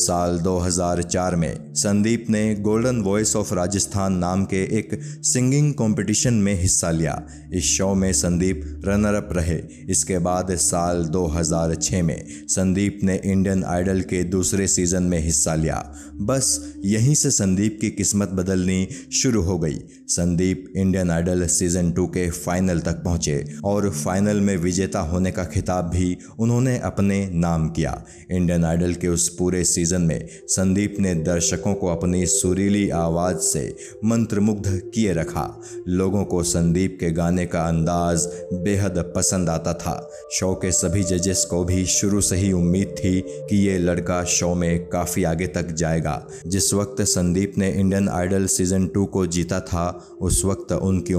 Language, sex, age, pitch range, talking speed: Hindi, male, 20-39, 85-100 Hz, 90 wpm